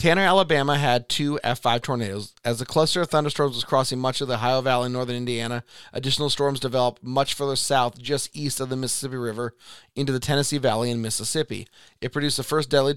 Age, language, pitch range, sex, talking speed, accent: 30-49, English, 120-140 Hz, male, 205 wpm, American